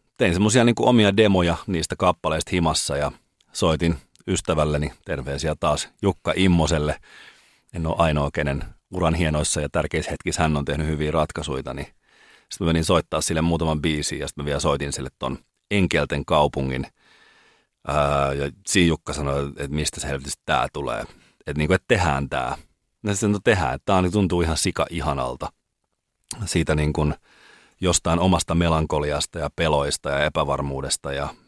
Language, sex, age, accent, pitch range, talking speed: Finnish, male, 30-49, native, 75-90 Hz, 160 wpm